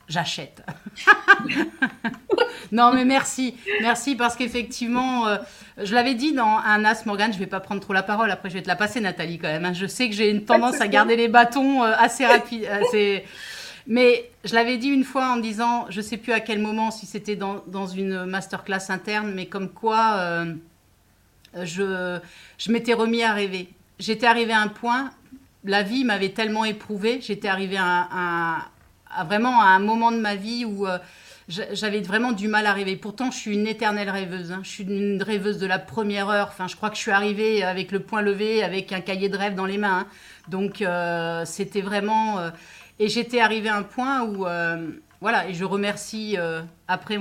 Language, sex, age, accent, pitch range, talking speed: French, female, 30-49, French, 190-230 Hz, 205 wpm